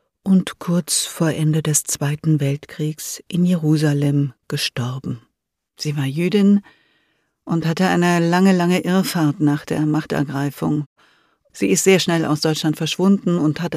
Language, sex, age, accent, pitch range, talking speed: German, female, 50-69, German, 150-175 Hz, 135 wpm